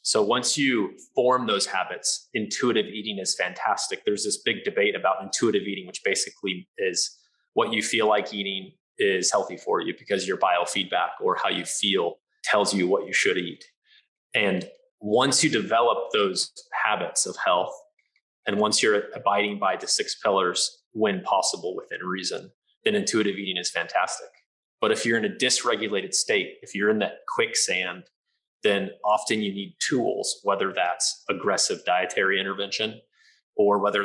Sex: male